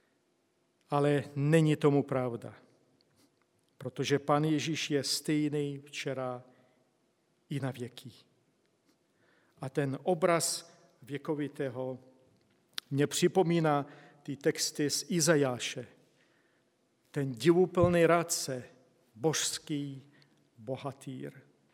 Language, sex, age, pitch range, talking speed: Czech, male, 50-69, 135-170 Hz, 75 wpm